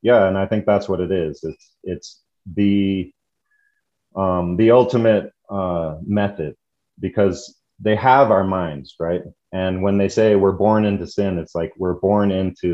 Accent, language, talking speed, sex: American, English, 165 wpm, male